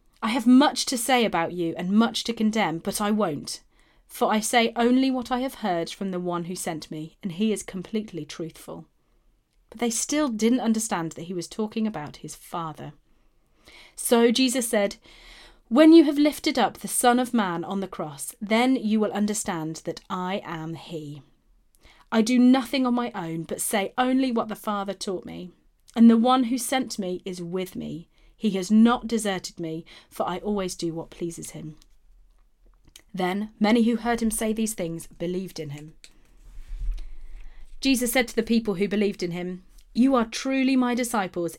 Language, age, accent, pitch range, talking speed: English, 30-49, British, 175-240 Hz, 185 wpm